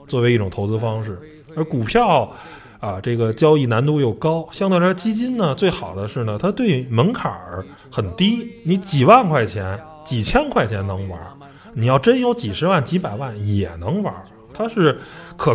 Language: Chinese